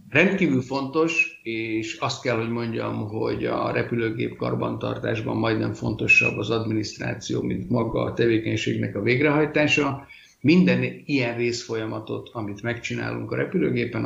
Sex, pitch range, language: male, 105-120 Hz, Hungarian